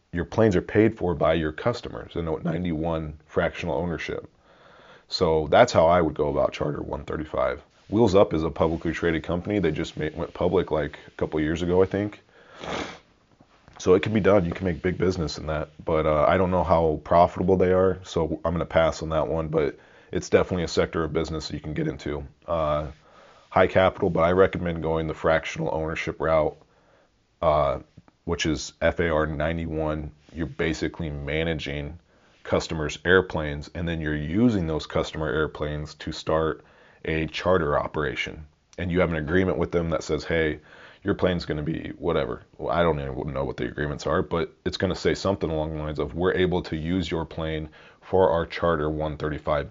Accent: American